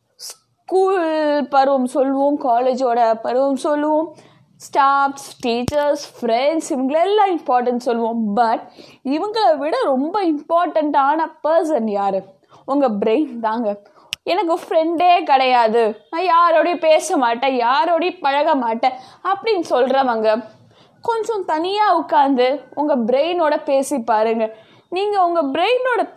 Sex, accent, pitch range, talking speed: female, native, 260-360 Hz, 100 wpm